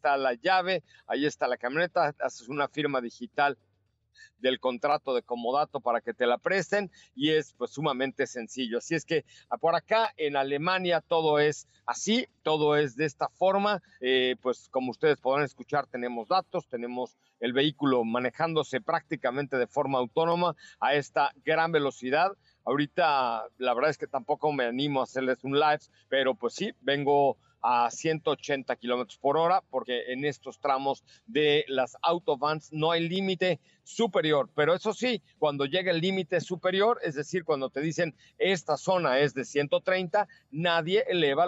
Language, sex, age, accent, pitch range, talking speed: Spanish, male, 50-69, Mexican, 130-175 Hz, 160 wpm